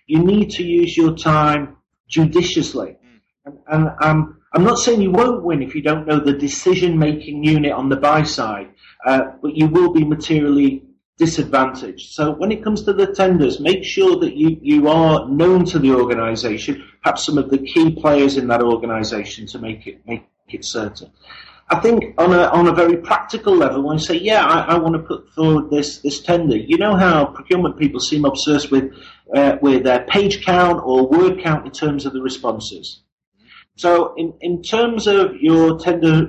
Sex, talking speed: male, 190 wpm